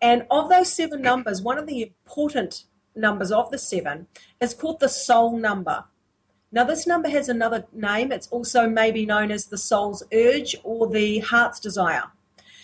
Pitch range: 210-270 Hz